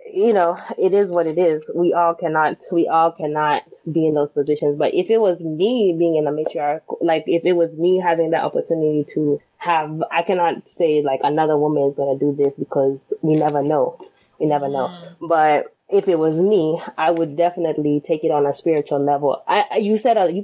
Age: 20-39